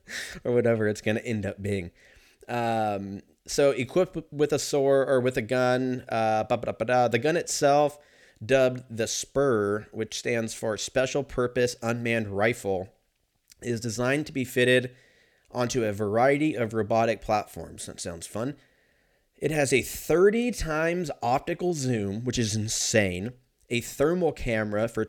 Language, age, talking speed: English, 30-49, 140 wpm